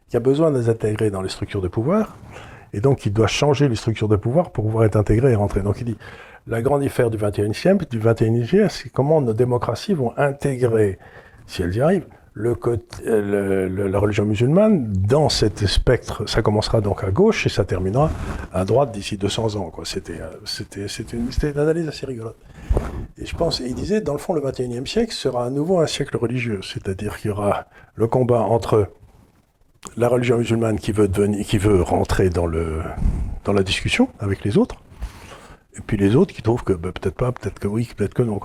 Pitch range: 100-135 Hz